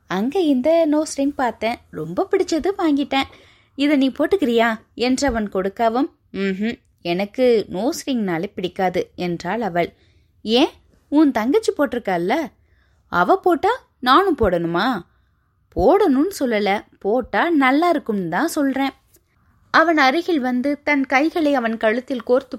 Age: 20-39